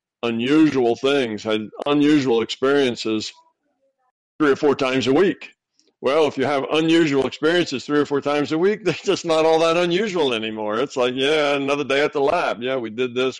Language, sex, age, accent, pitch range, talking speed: English, male, 50-69, American, 115-140 Hz, 190 wpm